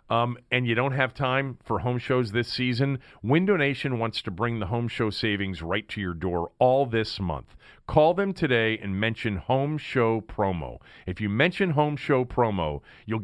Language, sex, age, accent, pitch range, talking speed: English, male, 40-59, American, 105-145 Hz, 190 wpm